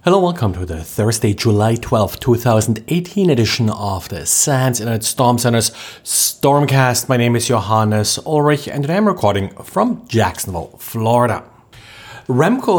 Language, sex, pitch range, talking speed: English, male, 115-150 Hz, 135 wpm